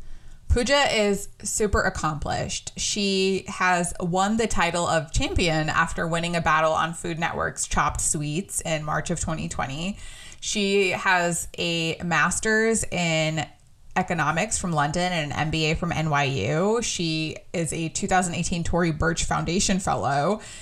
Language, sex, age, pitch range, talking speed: English, female, 20-39, 160-200 Hz, 130 wpm